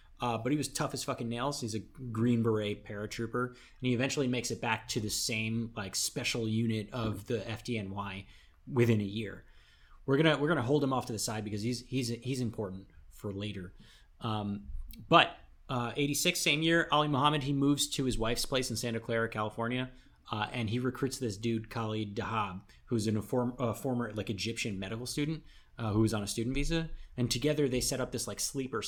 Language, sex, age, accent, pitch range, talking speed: English, male, 30-49, American, 100-130 Hz, 210 wpm